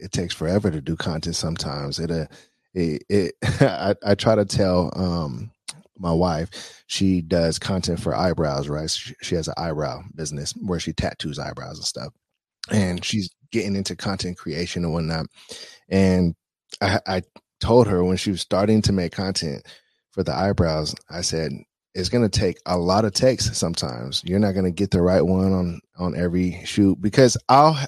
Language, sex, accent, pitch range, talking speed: English, male, American, 85-110 Hz, 185 wpm